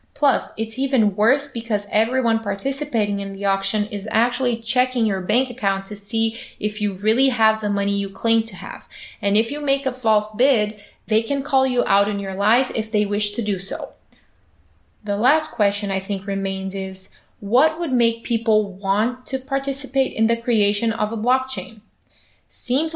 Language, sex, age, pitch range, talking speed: English, female, 20-39, 200-245 Hz, 185 wpm